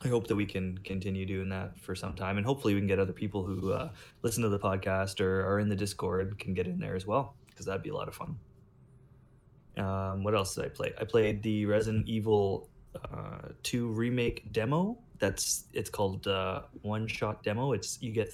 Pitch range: 95-115 Hz